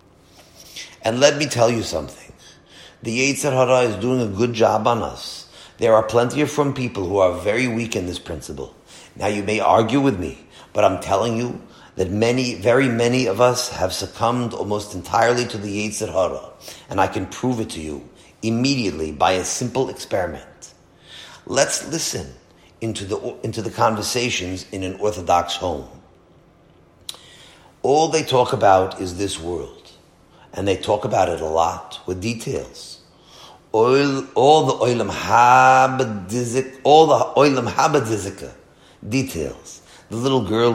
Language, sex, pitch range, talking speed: English, male, 90-120 Hz, 150 wpm